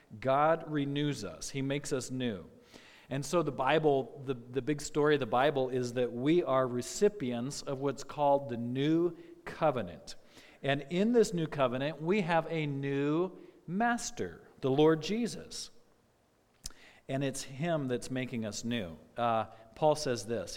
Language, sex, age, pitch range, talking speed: English, male, 50-69, 130-165 Hz, 155 wpm